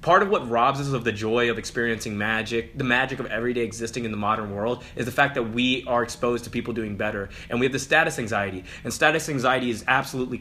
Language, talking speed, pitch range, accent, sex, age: English, 240 wpm, 120-160 Hz, American, male, 20-39